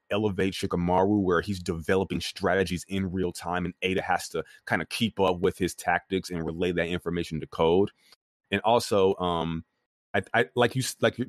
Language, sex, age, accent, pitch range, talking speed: English, male, 30-49, American, 90-110 Hz, 180 wpm